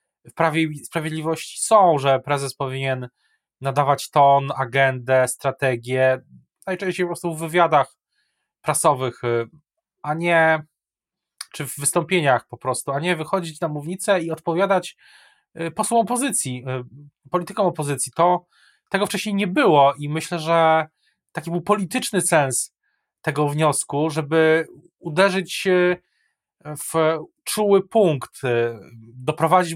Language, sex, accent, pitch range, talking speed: Polish, male, native, 140-175 Hz, 110 wpm